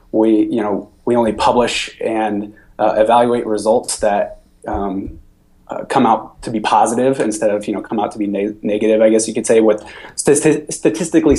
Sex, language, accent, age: male, English, American, 20-39